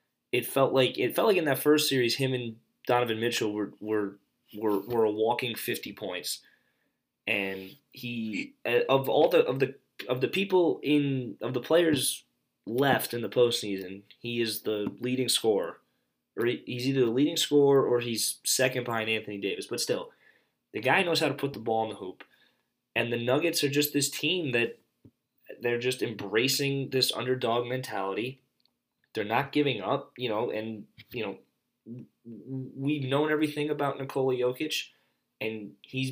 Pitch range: 110-135 Hz